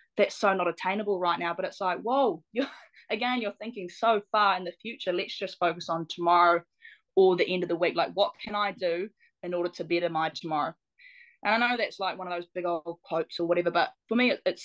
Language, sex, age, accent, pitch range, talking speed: English, female, 10-29, Australian, 175-210 Hz, 235 wpm